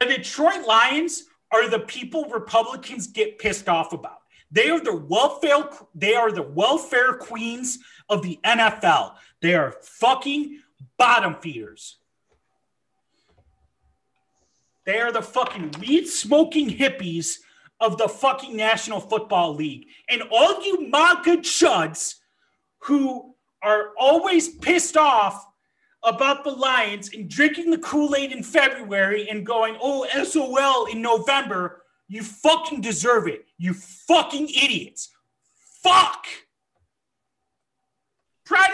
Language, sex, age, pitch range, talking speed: English, male, 30-49, 200-295 Hz, 115 wpm